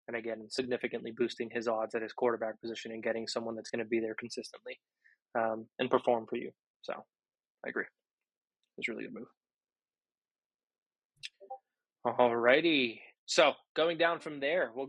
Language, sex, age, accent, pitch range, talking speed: English, male, 20-39, American, 120-150 Hz, 155 wpm